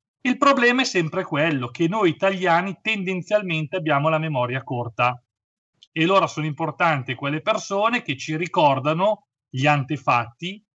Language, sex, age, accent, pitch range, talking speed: Italian, male, 40-59, native, 140-195 Hz, 135 wpm